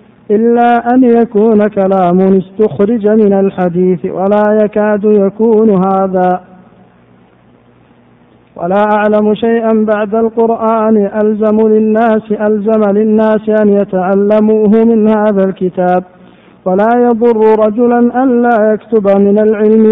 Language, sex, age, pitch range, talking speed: Arabic, male, 50-69, 195-220 Hz, 95 wpm